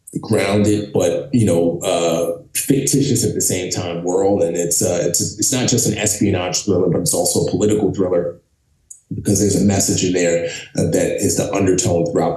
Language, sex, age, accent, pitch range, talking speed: English, male, 30-49, American, 85-100 Hz, 185 wpm